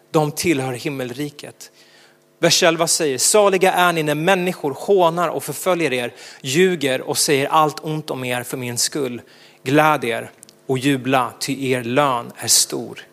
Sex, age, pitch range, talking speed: male, 30-49, 130-180 Hz, 145 wpm